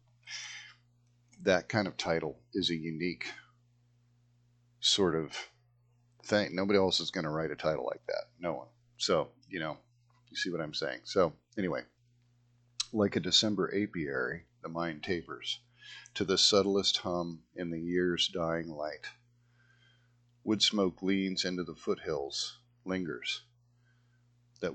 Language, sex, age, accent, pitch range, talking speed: English, male, 40-59, American, 90-120 Hz, 135 wpm